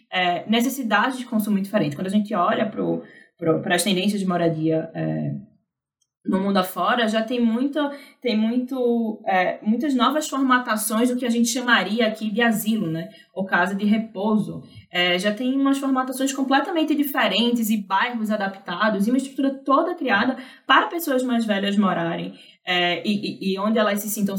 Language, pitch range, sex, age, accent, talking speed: Portuguese, 185-245 Hz, female, 10-29, Brazilian, 150 wpm